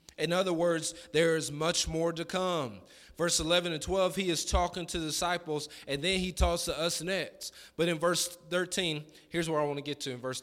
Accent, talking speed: American, 225 wpm